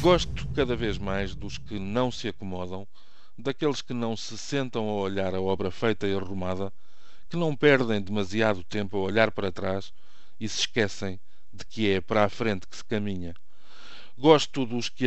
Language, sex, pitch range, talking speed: Portuguese, male, 100-120 Hz, 180 wpm